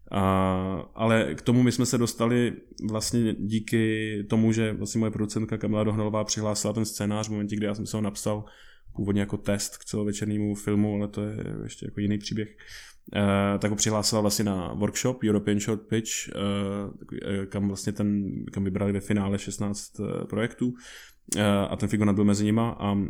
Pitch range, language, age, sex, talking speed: 100-110 Hz, Czech, 20-39, male, 180 wpm